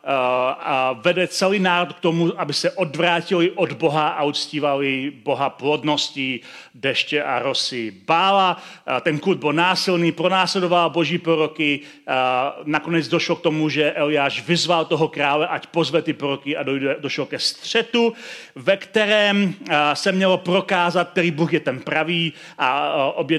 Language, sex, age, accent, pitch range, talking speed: Czech, male, 40-59, native, 145-180 Hz, 145 wpm